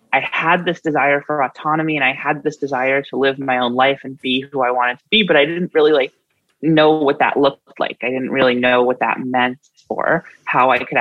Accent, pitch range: American, 125-155 Hz